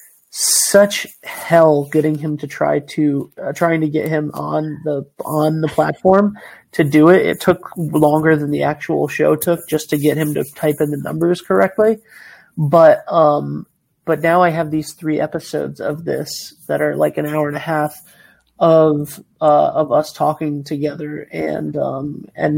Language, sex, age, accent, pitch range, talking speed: English, male, 30-49, American, 150-165 Hz, 175 wpm